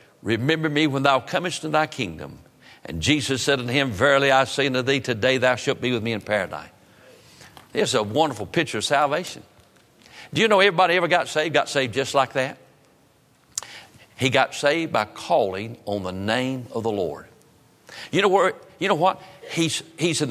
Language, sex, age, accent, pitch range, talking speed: English, male, 60-79, American, 120-150 Hz, 190 wpm